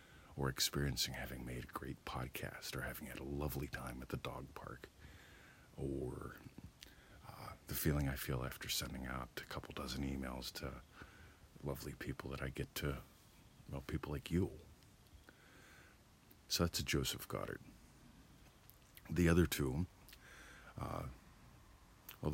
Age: 50-69